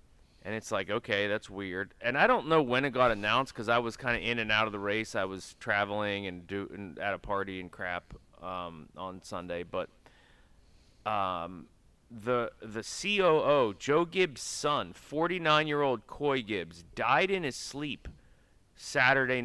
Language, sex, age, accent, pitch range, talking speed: English, male, 30-49, American, 100-125 Hz, 165 wpm